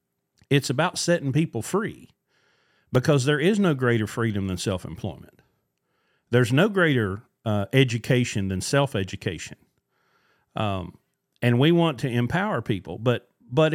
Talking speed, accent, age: 120 wpm, American, 40-59